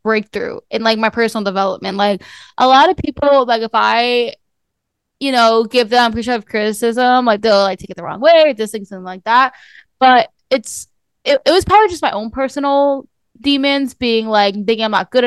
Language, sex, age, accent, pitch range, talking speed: English, female, 10-29, American, 215-270 Hz, 195 wpm